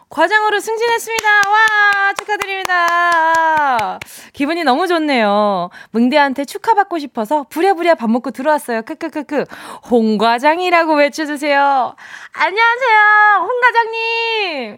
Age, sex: 20-39, female